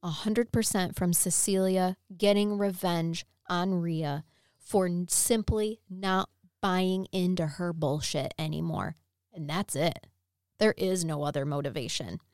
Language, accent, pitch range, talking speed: English, American, 170-205 Hz, 110 wpm